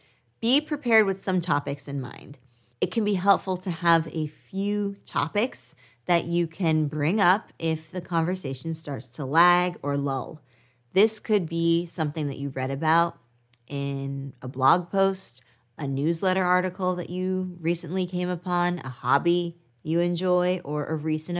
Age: 20-39